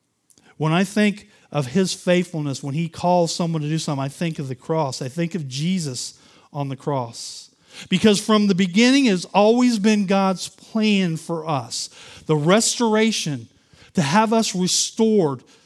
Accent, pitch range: American, 150-205 Hz